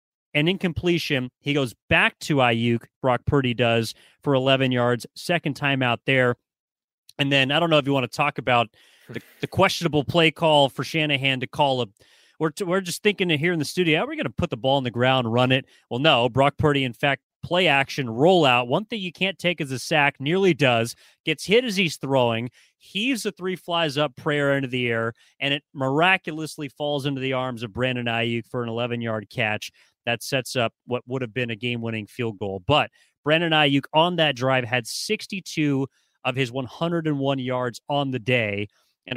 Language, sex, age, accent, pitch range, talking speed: English, male, 30-49, American, 125-155 Hz, 210 wpm